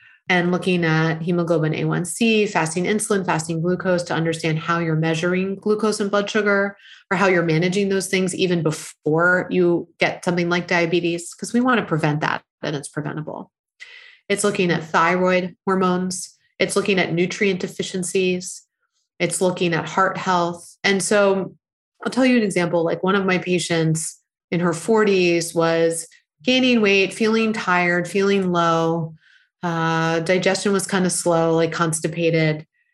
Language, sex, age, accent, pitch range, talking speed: English, female, 30-49, American, 170-210 Hz, 155 wpm